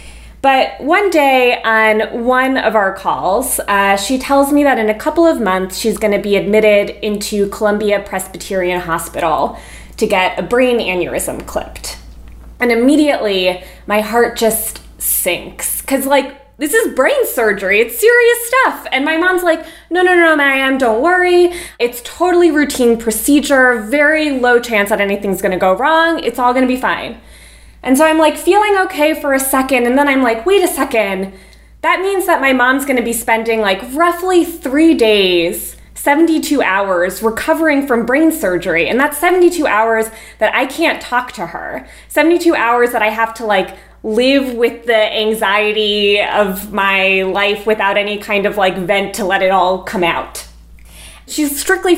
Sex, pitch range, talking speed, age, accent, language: female, 205-300 Hz, 175 wpm, 20-39, American, English